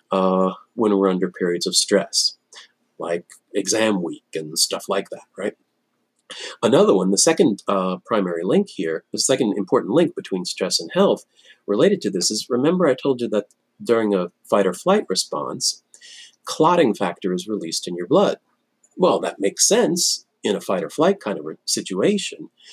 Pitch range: 100-145 Hz